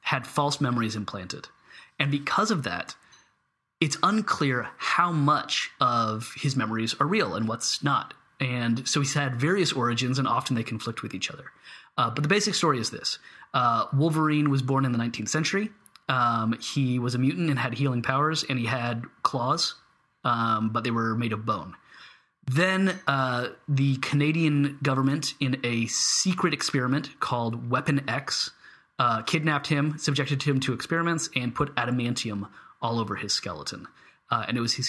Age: 30-49